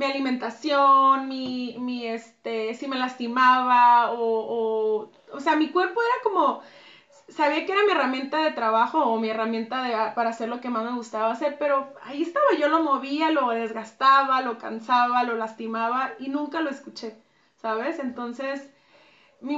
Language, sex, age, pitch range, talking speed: Spanish, female, 30-49, 230-285 Hz, 165 wpm